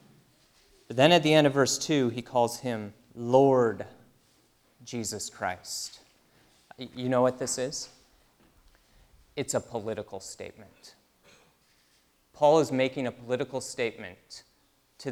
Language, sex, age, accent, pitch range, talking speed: English, male, 30-49, American, 105-135 Hz, 120 wpm